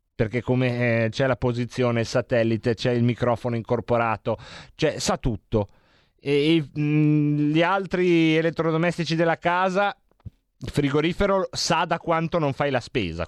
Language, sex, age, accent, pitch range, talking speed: Italian, male, 30-49, native, 135-190 Hz, 145 wpm